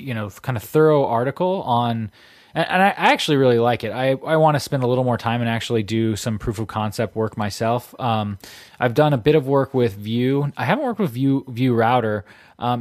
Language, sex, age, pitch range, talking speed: English, male, 20-39, 110-130 Hz, 230 wpm